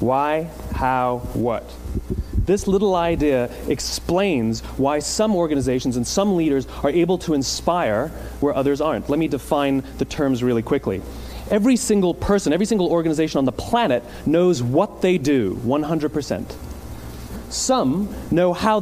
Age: 30-49